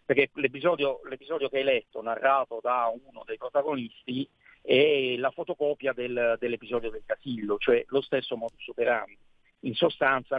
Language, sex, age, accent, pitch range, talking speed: Italian, male, 50-69, native, 125-175 Hz, 145 wpm